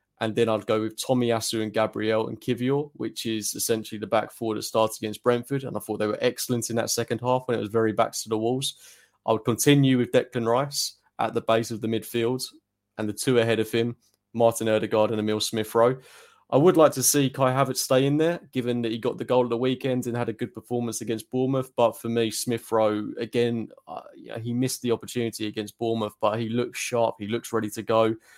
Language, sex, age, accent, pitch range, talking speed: English, male, 20-39, British, 110-125 Hz, 235 wpm